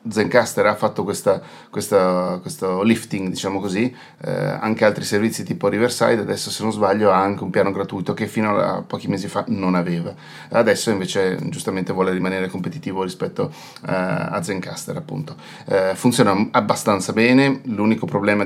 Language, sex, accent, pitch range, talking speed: Italian, male, native, 95-110 Hz, 150 wpm